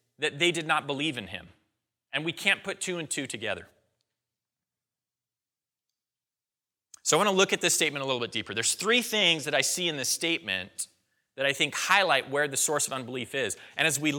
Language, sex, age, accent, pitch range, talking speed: English, male, 30-49, American, 130-175 Hz, 205 wpm